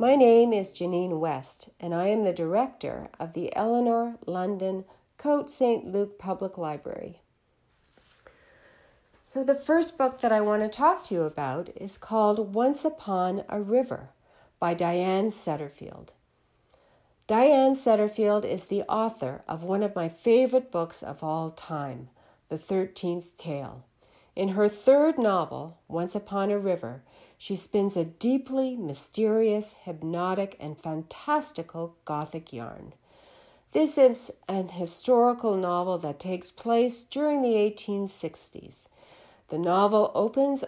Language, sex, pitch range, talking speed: English, female, 165-235 Hz, 130 wpm